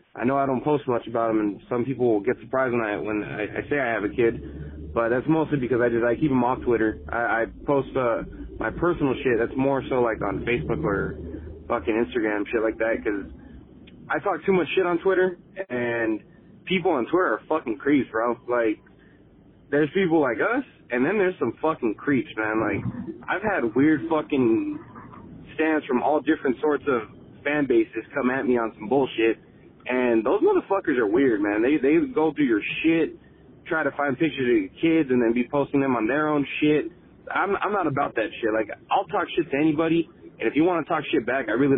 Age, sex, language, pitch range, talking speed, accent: 30-49, male, English, 120-175 Hz, 215 wpm, American